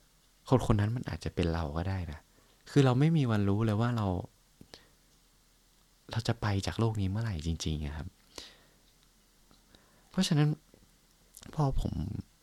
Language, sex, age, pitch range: Thai, male, 20-39, 85-115 Hz